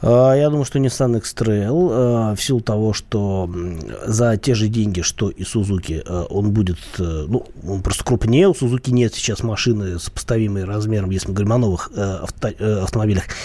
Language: Russian